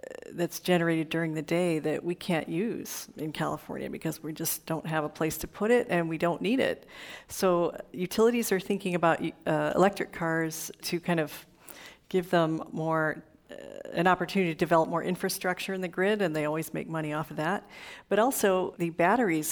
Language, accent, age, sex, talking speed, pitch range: English, American, 50-69, female, 190 wpm, 160-190 Hz